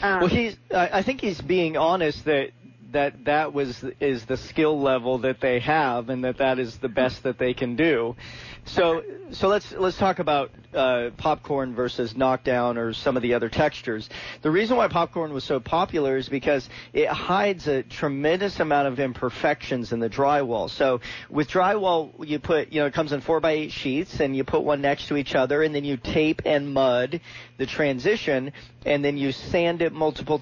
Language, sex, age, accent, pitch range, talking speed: English, male, 40-59, American, 130-160 Hz, 195 wpm